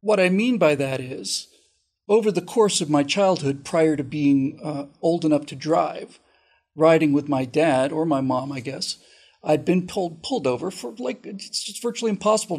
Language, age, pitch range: English, 50-69, 150-205 Hz